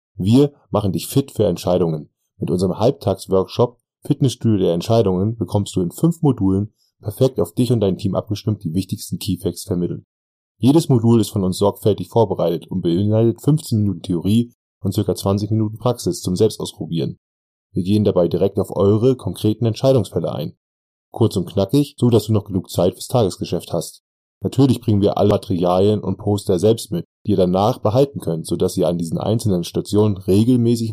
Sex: male